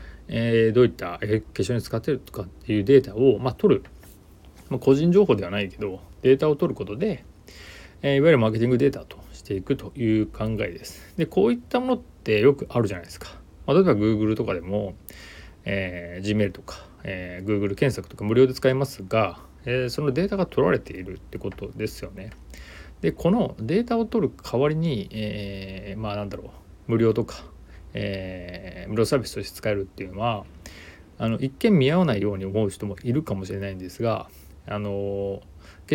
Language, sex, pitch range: Japanese, male, 90-120 Hz